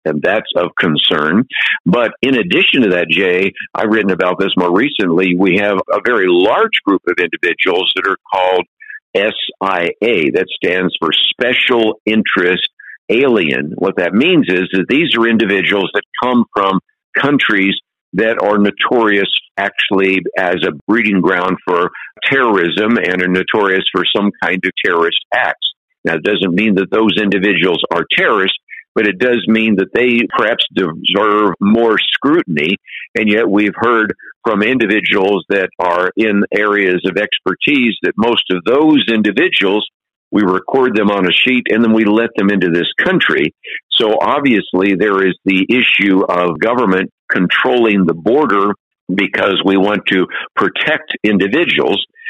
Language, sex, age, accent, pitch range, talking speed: English, male, 60-79, American, 95-120 Hz, 150 wpm